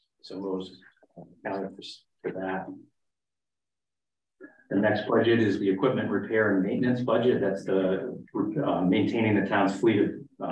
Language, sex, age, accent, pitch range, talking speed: English, male, 40-59, American, 95-105 Hz, 125 wpm